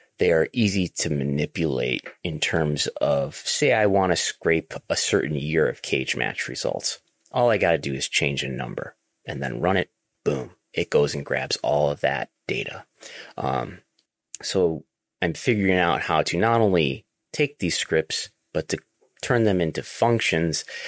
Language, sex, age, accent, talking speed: English, male, 30-49, American, 170 wpm